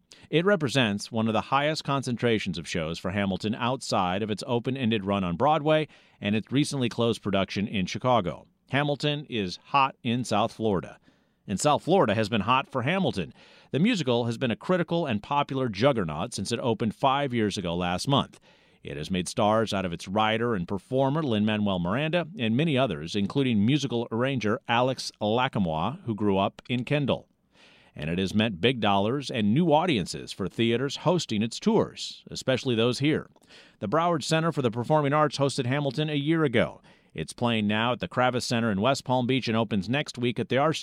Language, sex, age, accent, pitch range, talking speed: English, male, 40-59, American, 110-140 Hz, 190 wpm